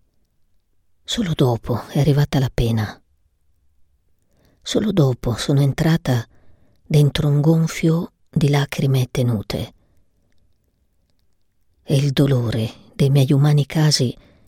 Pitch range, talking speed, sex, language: 95-150 Hz, 95 wpm, female, Italian